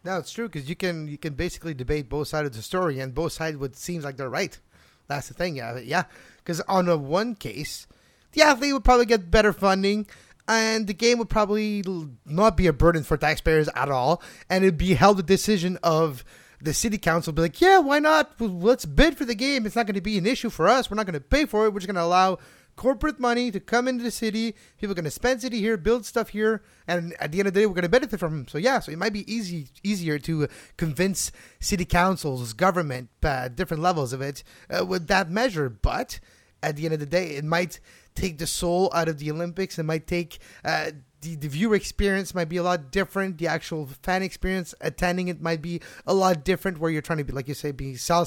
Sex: male